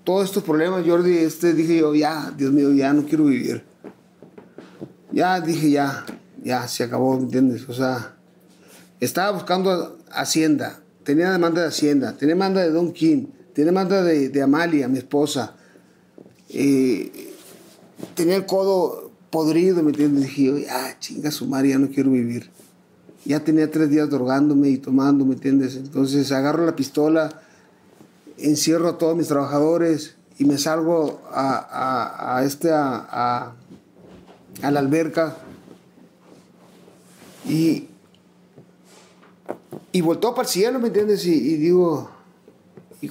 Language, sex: Spanish, male